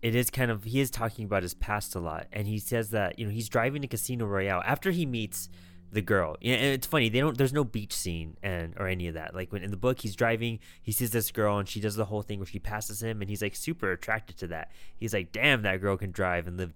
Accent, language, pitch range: American, English, 90-115 Hz